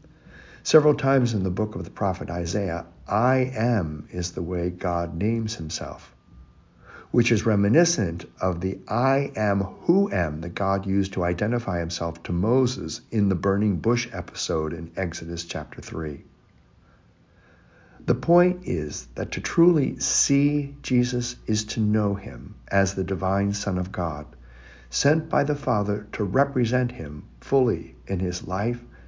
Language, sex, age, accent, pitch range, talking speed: English, male, 60-79, American, 85-115 Hz, 150 wpm